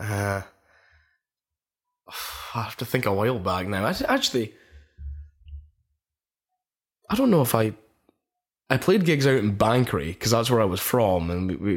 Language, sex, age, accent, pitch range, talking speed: English, male, 10-29, British, 95-120 Hz, 160 wpm